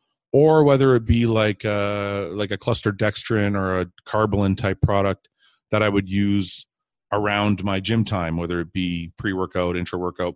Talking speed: 150 wpm